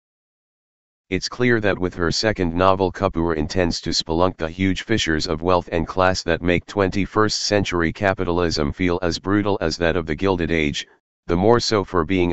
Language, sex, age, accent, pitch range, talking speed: English, male, 40-59, American, 80-100 Hz, 175 wpm